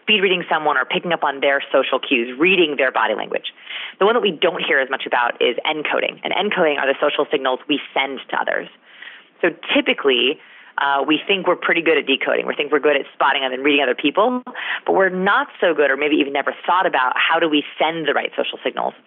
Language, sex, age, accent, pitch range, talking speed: English, female, 30-49, American, 130-180 Hz, 235 wpm